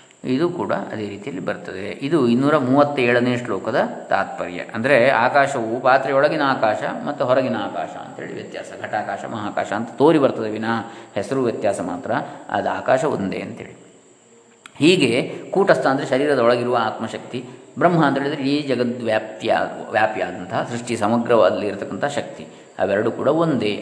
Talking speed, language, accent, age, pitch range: 125 wpm, Kannada, native, 20-39, 115-150 Hz